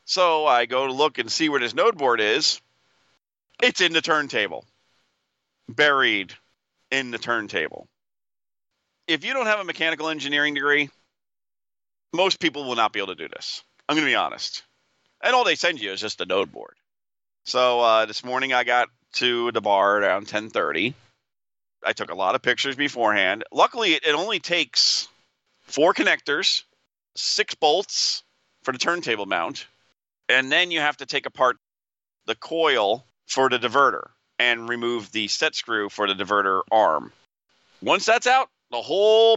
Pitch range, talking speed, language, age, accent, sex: 115-160 Hz, 165 wpm, English, 40-59, American, male